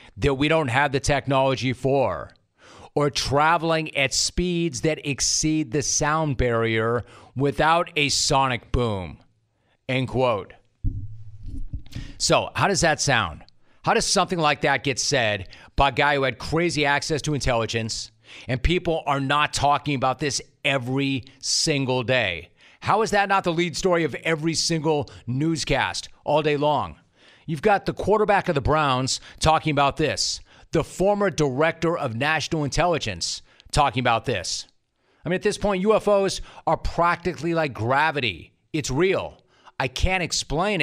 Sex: male